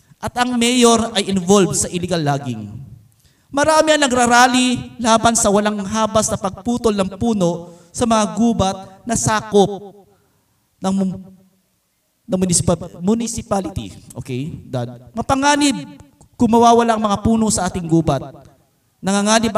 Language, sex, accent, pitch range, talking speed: Filipino, male, native, 150-220 Hz, 115 wpm